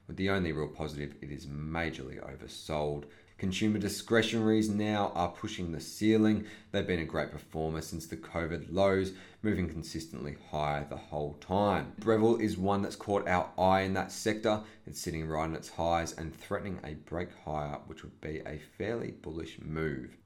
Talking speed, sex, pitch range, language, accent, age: 175 wpm, male, 75-95 Hz, English, Australian, 30-49